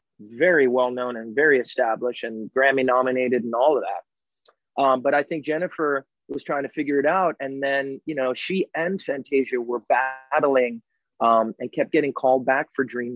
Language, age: English, 30-49